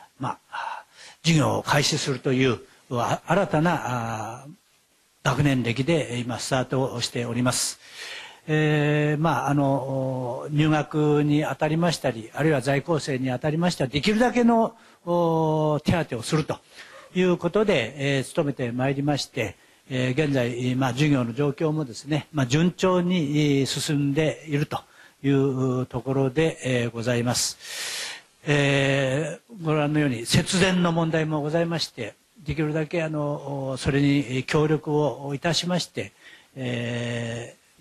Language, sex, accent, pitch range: Japanese, male, native, 130-155 Hz